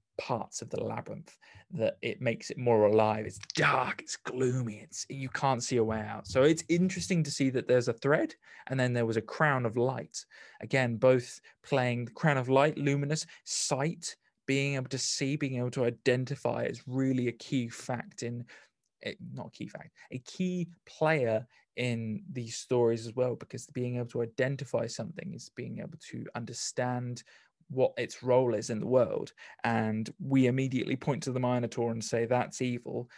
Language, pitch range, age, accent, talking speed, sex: English, 115-135 Hz, 20-39, British, 185 wpm, male